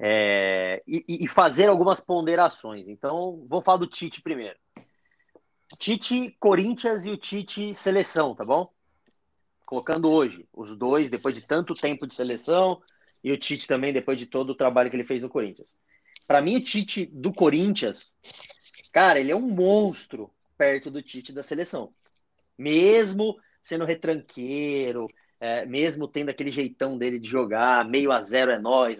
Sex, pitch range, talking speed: male, 120-170 Hz, 155 wpm